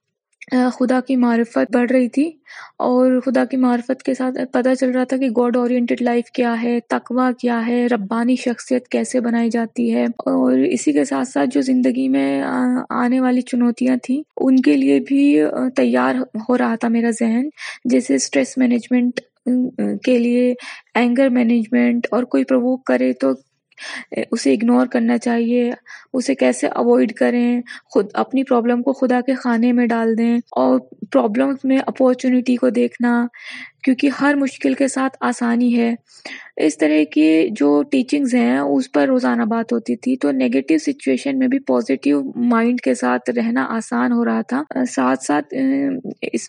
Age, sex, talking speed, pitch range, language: 20-39, female, 165 wpm, 155-260 Hz, Urdu